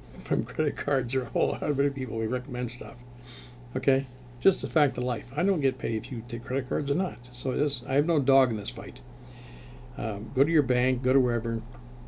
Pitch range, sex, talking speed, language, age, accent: 105-135 Hz, male, 235 wpm, English, 60-79, American